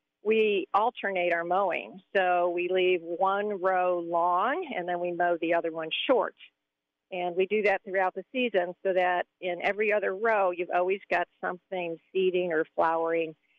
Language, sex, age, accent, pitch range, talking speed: English, female, 50-69, American, 170-195 Hz, 170 wpm